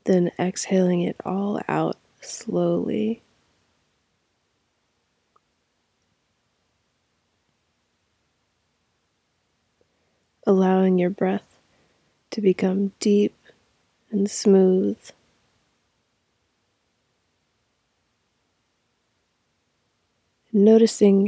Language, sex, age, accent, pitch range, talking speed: English, female, 20-39, American, 190-215 Hz, 40 wpm